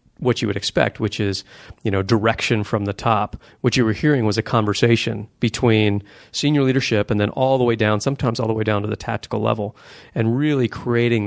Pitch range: 105-125 Hz